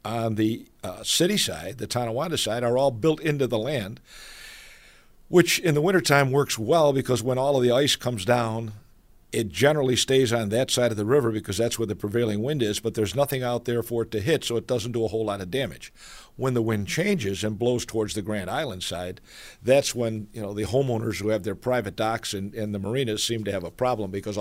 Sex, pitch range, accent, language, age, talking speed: male, 105-125 Hz, American, English, 50-69, 230 wpm